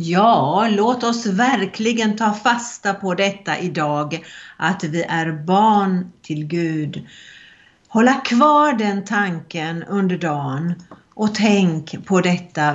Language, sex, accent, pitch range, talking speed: Swedish, female, native, 175-220 Hz, 120 wpm